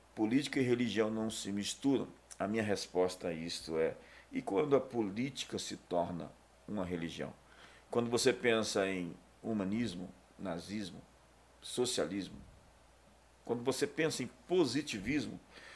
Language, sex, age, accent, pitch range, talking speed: Portuguese, male, 50-69, Brazilian, 90-120 Hz, 120 wpm